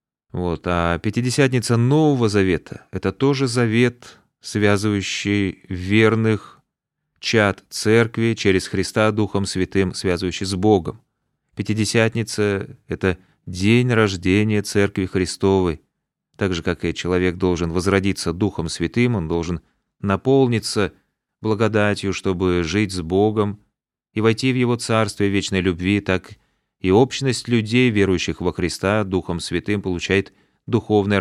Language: Russian